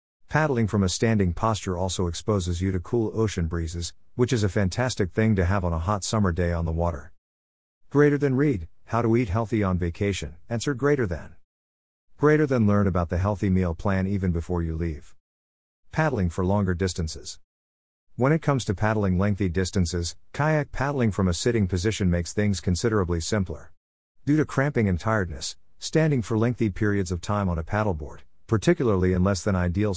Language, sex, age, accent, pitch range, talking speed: English, male, 50-69, American, 85-115 Hz, 180 wpm